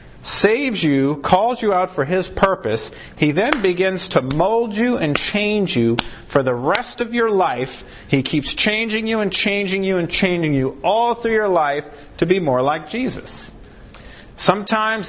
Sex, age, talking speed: male, 40-59, 170 wpm